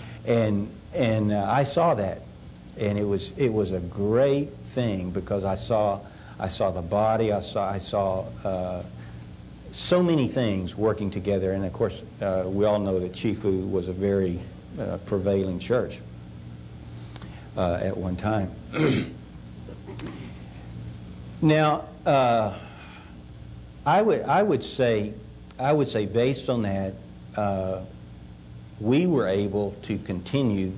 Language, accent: English, American